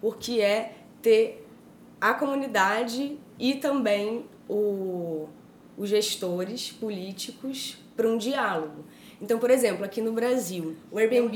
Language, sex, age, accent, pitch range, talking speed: Portuguese, female, 20-39, Brazilian, 190-245 Hz, 110 wpm